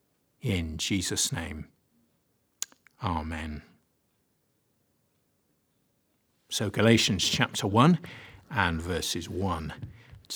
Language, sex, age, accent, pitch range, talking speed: English, male, 60-79, British, 95-120 Hz, 65 wpm